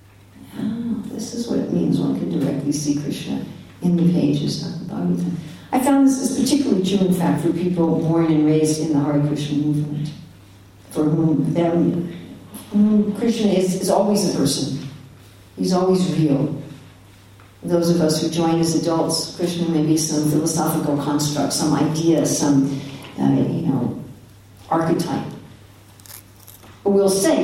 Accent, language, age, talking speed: American, English, 60-79, 145 wpm